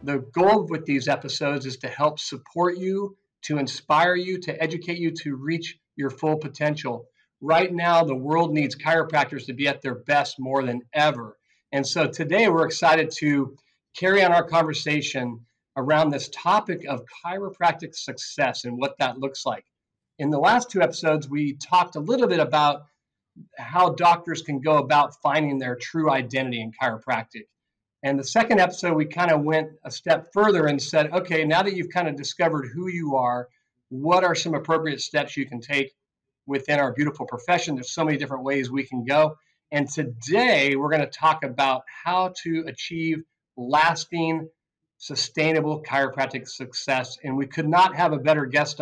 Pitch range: 135-165 Hz